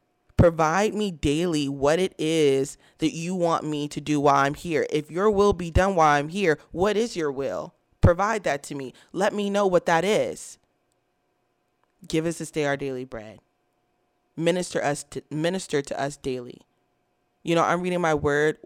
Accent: American